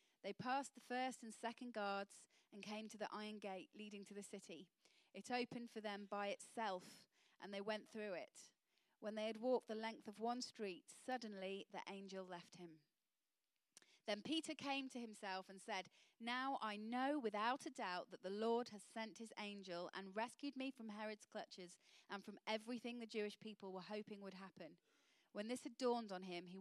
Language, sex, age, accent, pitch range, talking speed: English, female, 30-49, British, 195-245 Hz, 190 wpm